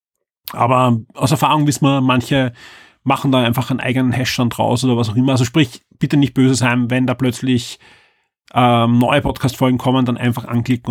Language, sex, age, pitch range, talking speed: German, male, 30-49, 125-150 Hz, 180 wpm